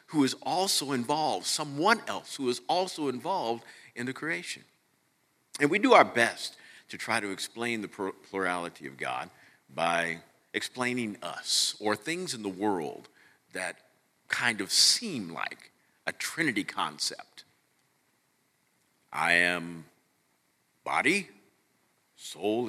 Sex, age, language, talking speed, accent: male, 50-69, English, 120 wpm, American